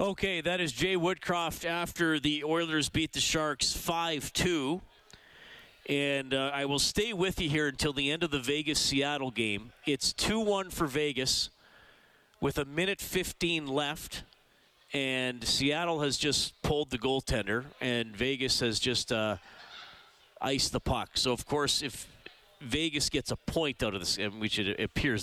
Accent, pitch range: American, 100-140 Hz